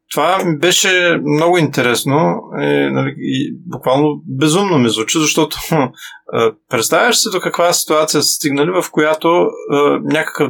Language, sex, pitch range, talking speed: Bulgarian, male, 130-165 Hz, 130 wpm